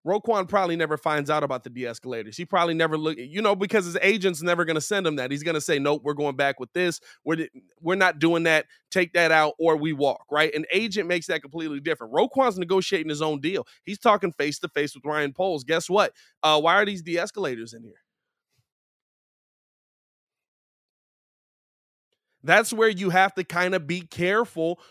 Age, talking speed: 20-39, 195 wpm